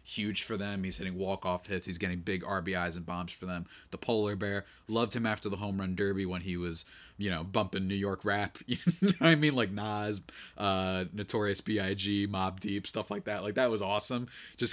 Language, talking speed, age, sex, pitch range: English, 220 wpm, 30-49, male, 95-140 Hz